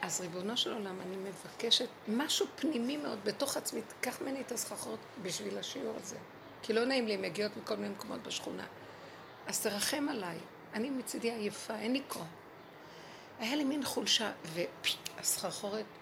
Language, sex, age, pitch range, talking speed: Hebrew, female, 60-79, 200-265 Hz, 155 wpm